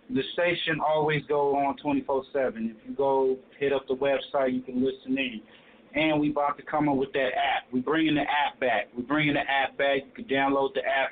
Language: English